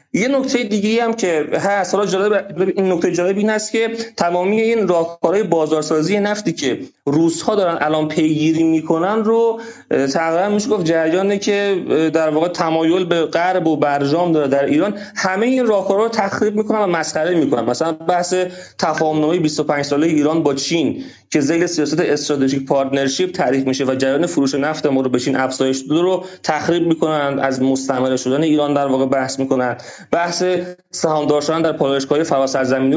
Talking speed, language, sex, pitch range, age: 165 wpm, Persian, male, 145-190 Hz, 30-49